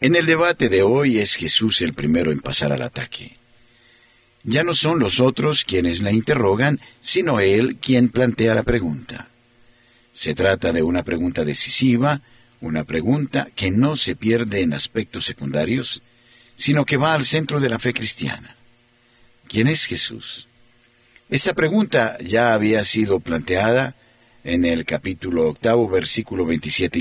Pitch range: 115-130 Hz